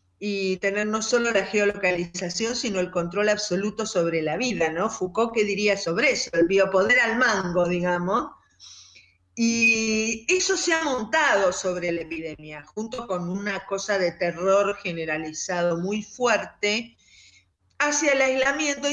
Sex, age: female, 50-69